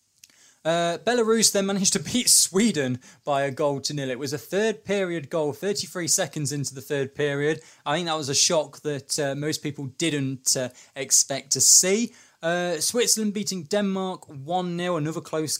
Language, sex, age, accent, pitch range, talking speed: English, male, 20-39, British, 135-175 Hz, 175 wpm